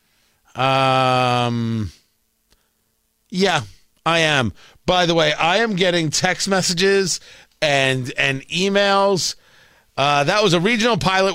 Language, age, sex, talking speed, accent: English, 50-69, male, 110 wpm, American